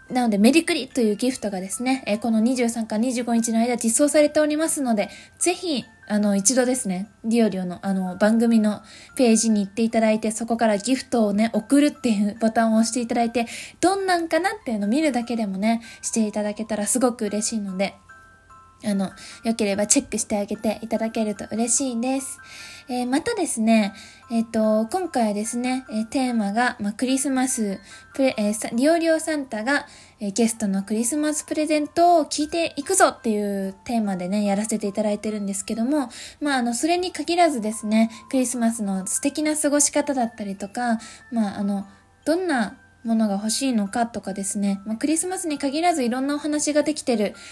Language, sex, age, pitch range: Japanese, female, 20-39, 210-265 Hz